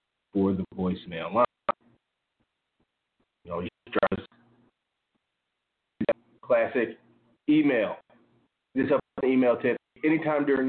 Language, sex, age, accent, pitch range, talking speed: English, male, 30-49, American, 110-160 Hz, 90 wpm